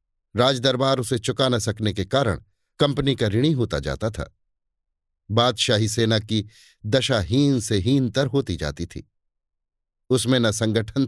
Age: 50-69